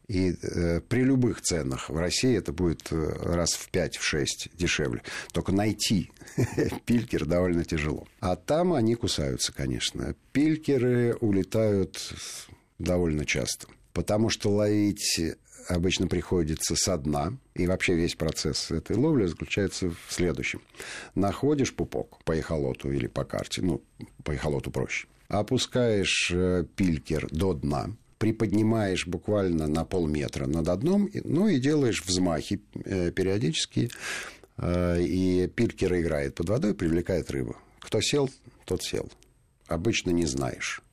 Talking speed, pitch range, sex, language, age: 125 wpm, 80-105 Hz, male, Russian, 50-69